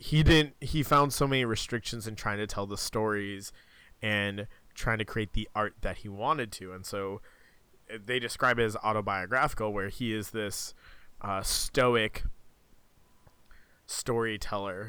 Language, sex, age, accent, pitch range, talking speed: English, male, 20-39, American, 100-120 Hz, 150 wpm